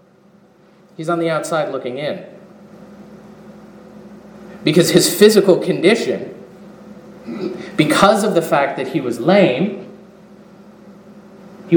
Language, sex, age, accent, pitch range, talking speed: English, male, 30-49, American, 180-195 Hz, 95 wpm